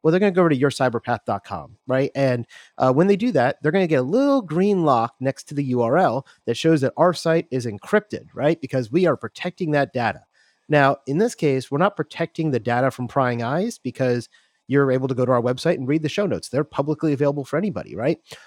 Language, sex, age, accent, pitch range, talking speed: English, male, 30-49, American, 120-155 Hz, 235 wpm